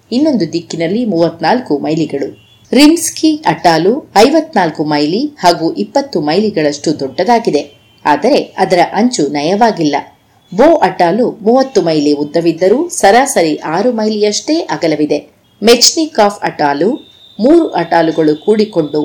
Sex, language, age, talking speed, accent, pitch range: female, Kannada, 30-49, 95 wpm, native, 155-235 Hz